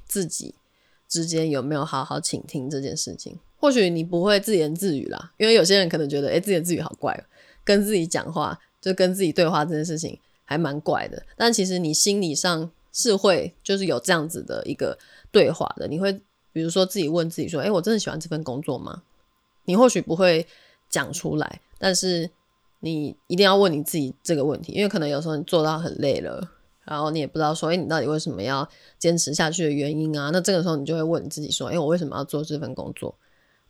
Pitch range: 150-185 Hz